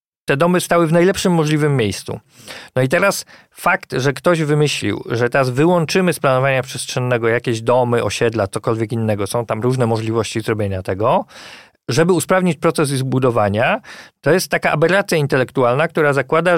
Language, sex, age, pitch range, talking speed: Polish, male, 40-59, 130-185 Hz, 155 wpm